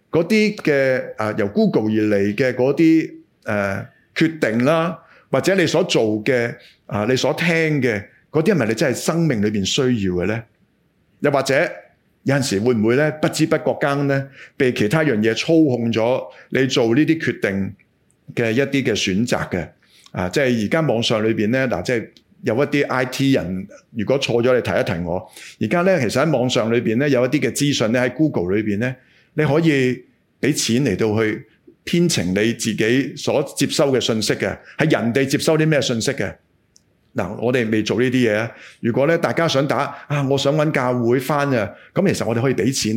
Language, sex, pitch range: Chinese, male, 110-155 Hz